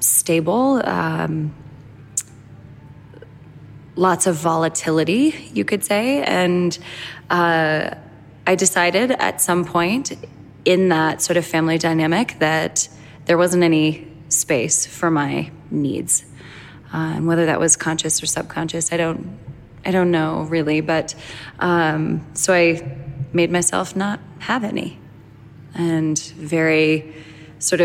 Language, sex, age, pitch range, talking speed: English, female, 20-39, 150-165 Hz, 115 wpm